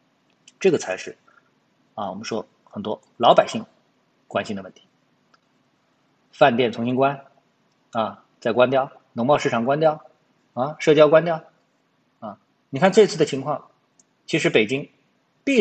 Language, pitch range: Chinese, 110-155 Hz